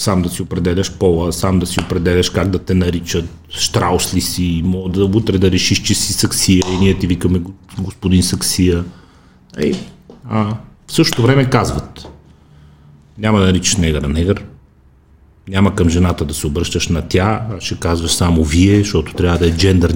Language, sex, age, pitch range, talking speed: Bulgarian, male, 30-49, 90-105 Hz, 170 wpm